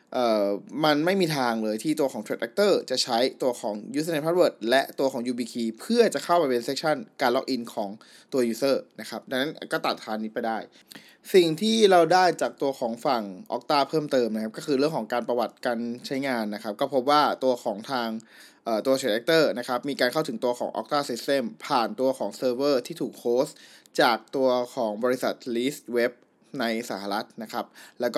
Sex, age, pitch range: male, 20-39, 120-150 Hz